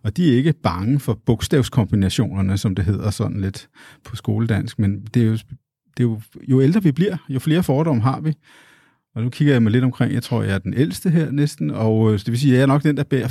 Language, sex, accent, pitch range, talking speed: Danish, male, native, 110-135 Hz, 250 wpm